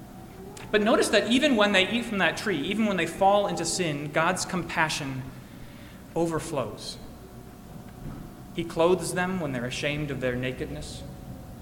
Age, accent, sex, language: 30-49, American, male, English